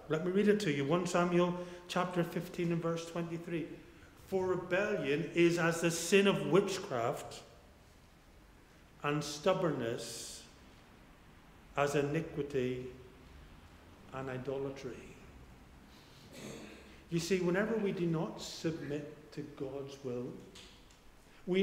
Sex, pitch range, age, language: male, 150-200 Hz, 50-69, English